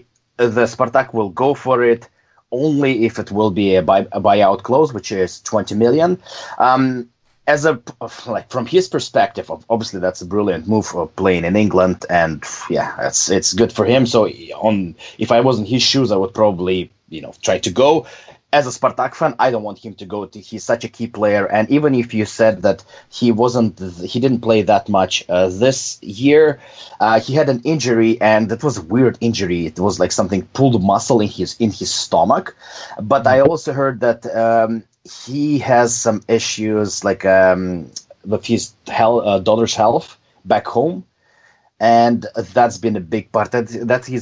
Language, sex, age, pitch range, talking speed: English, male, 30-49, 100-120 Hz, 190 wpm